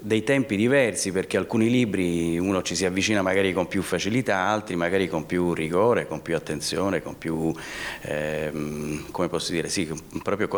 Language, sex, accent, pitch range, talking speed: Italian, male, native, 90-105 Hz, 170 wpm